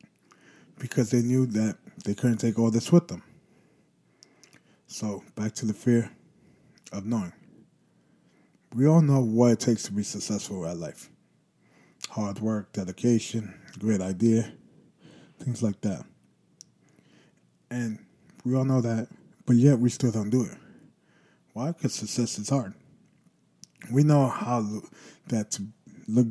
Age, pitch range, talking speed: 20-39, 110-125 Hz, 140 wpm